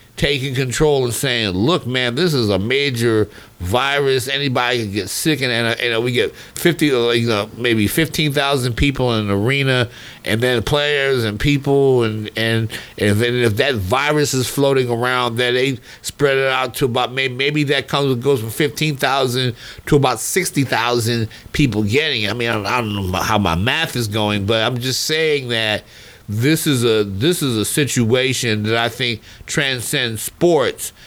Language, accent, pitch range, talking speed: English, American, 115-145 Hz, 185 wpm